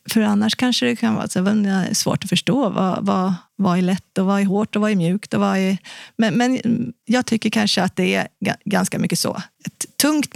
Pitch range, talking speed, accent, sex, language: 185-230 Hz, 225 wpm, native, female, Swedish